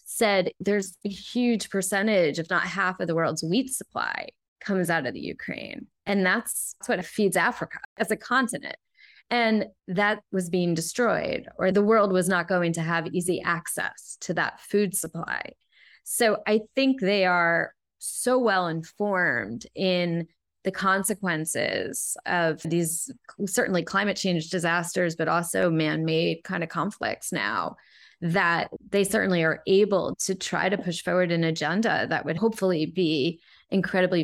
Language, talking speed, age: English, 150 wpm, 20-39